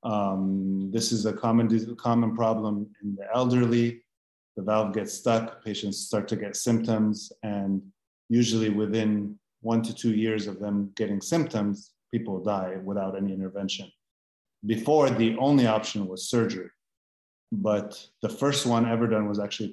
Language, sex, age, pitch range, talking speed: English, male, 30-49, 100-115 Hz, 145 wpm